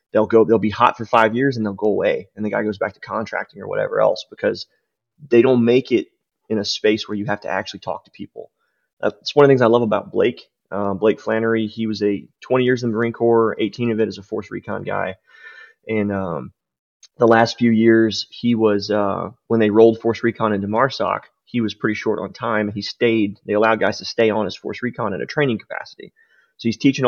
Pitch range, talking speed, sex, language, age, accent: 105-120 Hz, 235 wpm, male, English, 30-49, American